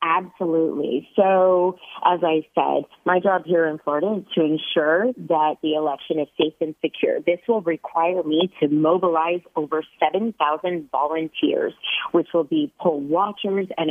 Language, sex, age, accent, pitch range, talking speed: English, female, 40-59, American, 160-195 Hz, 150 wpm